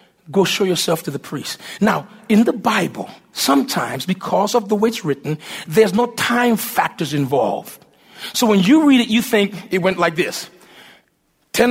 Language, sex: English, male